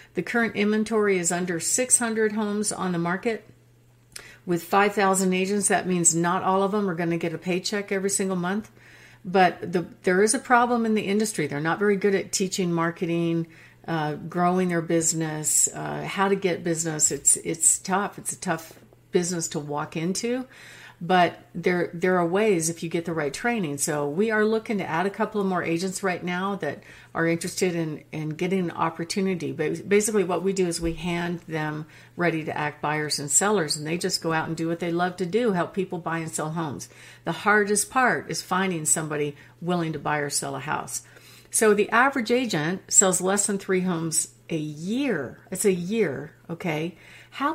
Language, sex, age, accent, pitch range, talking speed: English, female, 50-69, American, 165-200 Hz, 200 wpm